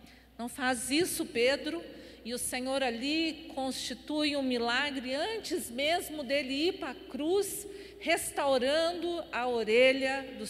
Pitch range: 245-315 Hz